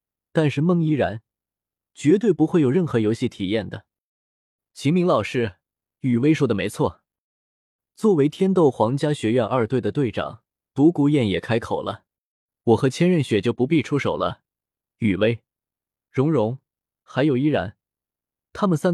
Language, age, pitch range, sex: Chinese, 20-39, 110-160 Hz, male